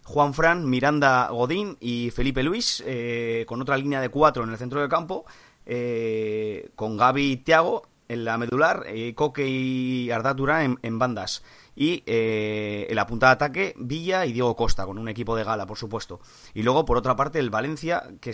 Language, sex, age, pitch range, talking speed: Spanish, male, 30-49, 110-140 Hz, 195 wpm